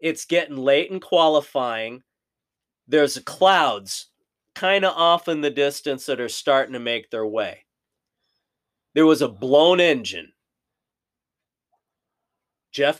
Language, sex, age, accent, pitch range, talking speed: English, male, 30-49, American, 140-170 Hz, 120 wpm